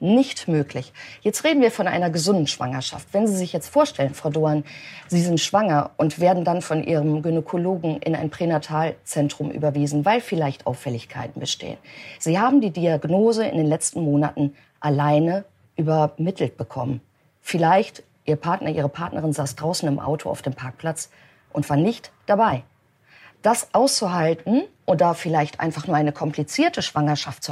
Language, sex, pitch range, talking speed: German, female, 145-190 Hz, 155 wpm